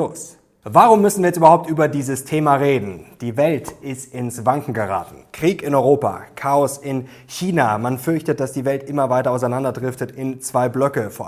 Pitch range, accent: 125-145 Hz, German